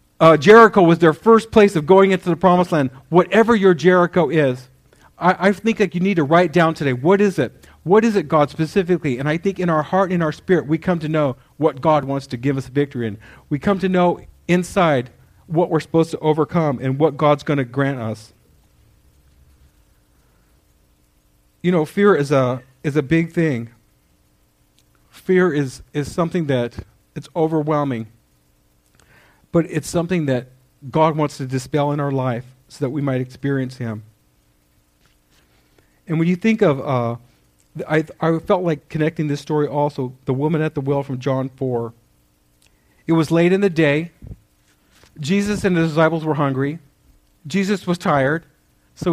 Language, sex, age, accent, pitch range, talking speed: English, male, 40-59, American, 120-170 Hz, 175 wpm